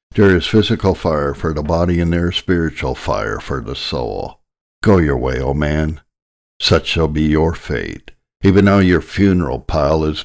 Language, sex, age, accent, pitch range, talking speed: English, male, 60-79, American, 75-90 Hz, 185 wpm